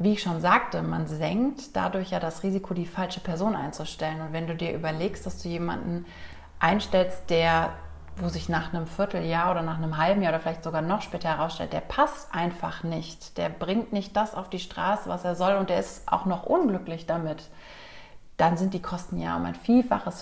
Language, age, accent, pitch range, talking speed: German, 30-49, German, 165-200 Hz, 205 wpm